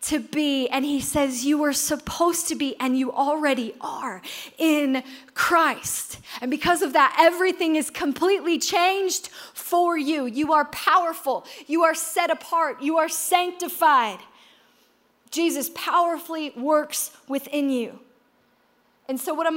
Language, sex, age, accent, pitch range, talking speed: English, female, 20-39, American, 275-350 Hz, 140 wpm